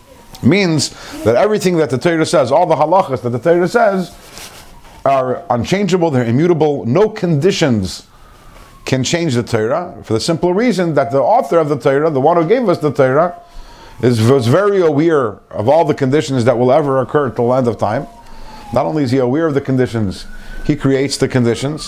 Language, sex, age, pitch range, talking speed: English, male, 50-69, 130-175 Hz, 190 wpm